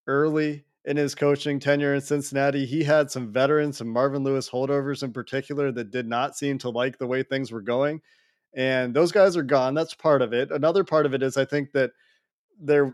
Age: 20-39